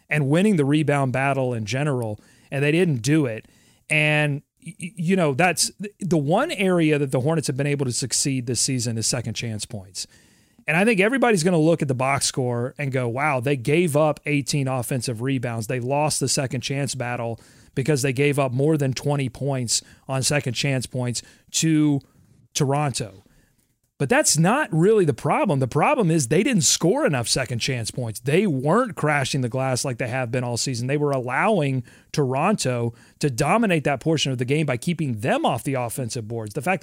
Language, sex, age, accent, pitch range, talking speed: English, male, 30-49, American, 130-160 Hz, 195 wpm